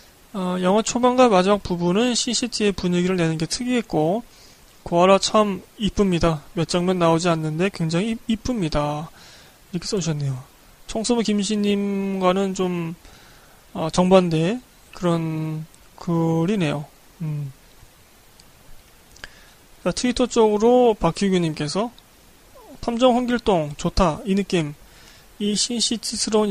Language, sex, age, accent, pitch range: Korean, male, 20-39, native, 165-215 Hz